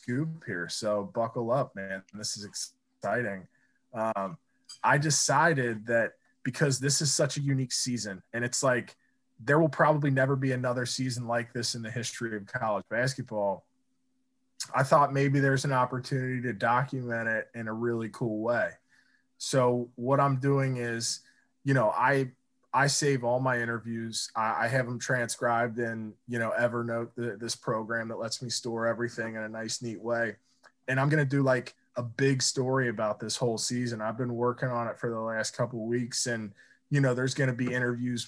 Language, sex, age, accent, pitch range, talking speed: English, male, 20-39, American, 115-135 Hz, 180 wpm